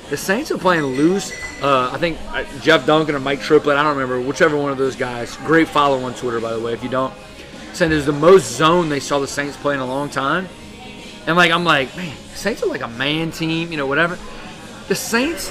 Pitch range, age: 135-170 Hz, 20-39